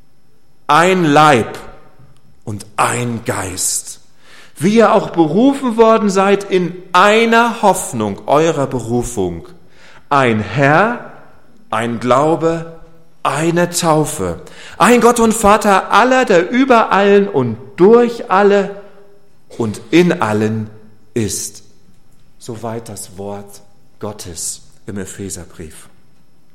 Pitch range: 130-195 Hz